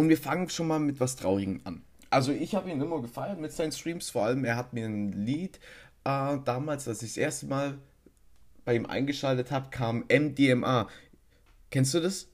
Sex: male